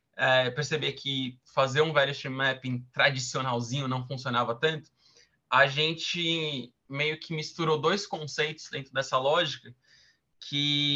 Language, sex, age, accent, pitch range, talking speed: Portuguese, male, 20-39, Brazilian, 130-155 Hz, 125 wpm